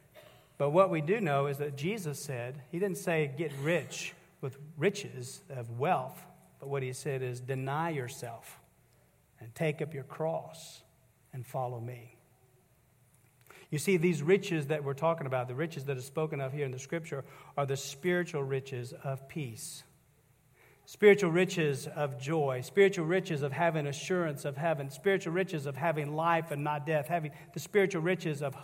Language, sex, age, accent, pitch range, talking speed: English, male, 50-69, American, 135-180 Hz, 170 wpm